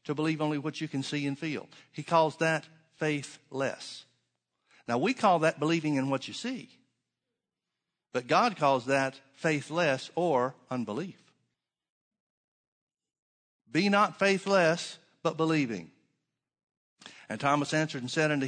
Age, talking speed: 60-79, 130 wpm